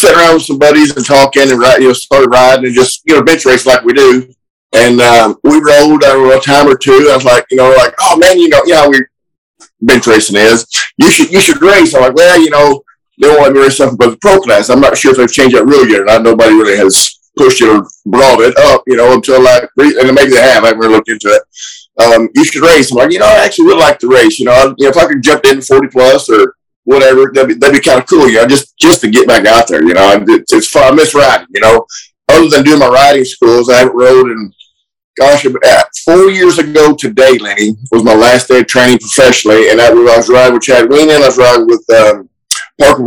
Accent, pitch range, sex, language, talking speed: American, 120-150 Hz, male, English, 270 wpm